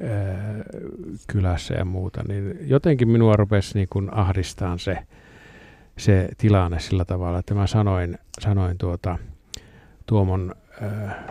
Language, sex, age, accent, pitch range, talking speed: Finnish, male, 50-69, native, 95-110 Hz, 110 wpm